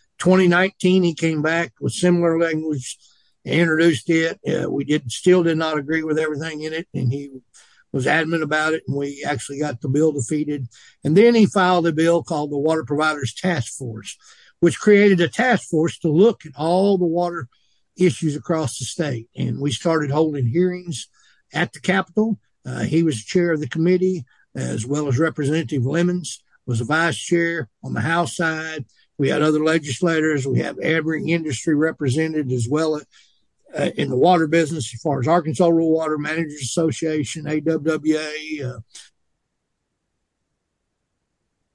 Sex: male